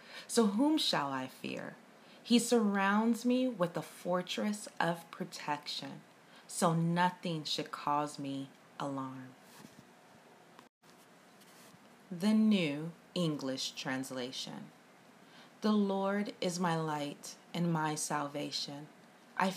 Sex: female